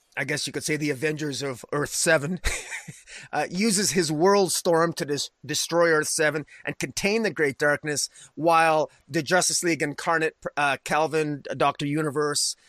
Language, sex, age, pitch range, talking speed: English, male, 30-49, 155-180 Hz, 140 wpm